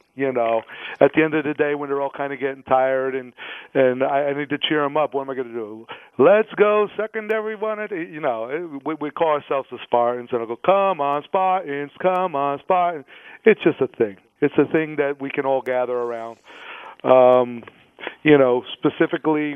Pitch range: 120-145 Hz